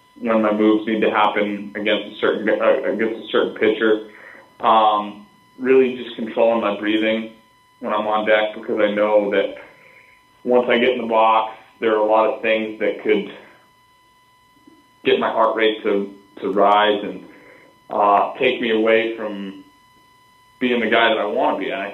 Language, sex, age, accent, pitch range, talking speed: English, male, 20-39, American, 105-130 Hz, 175 wpm